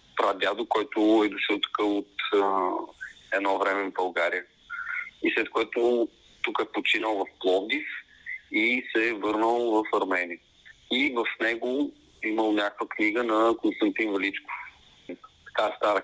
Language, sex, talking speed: Bulgarian, male, 135 wpm